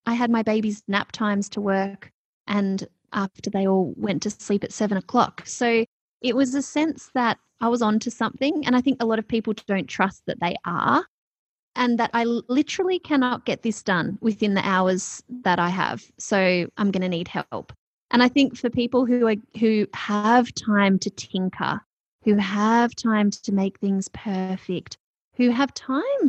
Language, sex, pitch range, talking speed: English, female, 195-245 Hz, 185 wpm